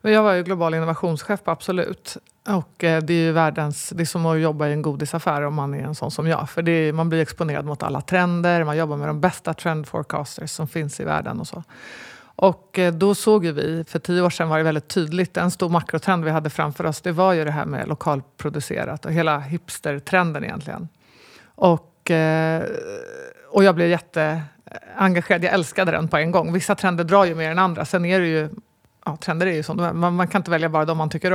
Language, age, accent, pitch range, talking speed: Swedish, 50-69, native, 155-185 Hz, 220 wpm